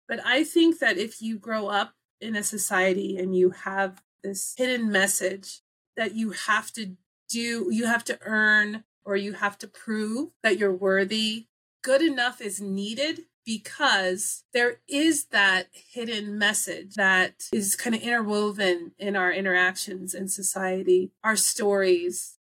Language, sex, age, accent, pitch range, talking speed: English, female, 30-49, American, 190-230 Hz, 150 wpm